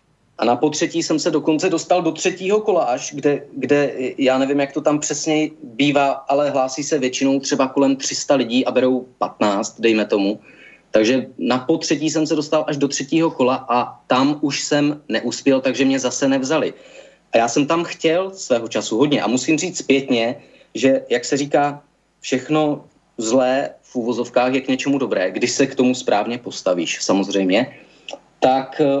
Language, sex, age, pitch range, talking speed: Czech, male, 30-49, 125-145 Hz, 175 wpm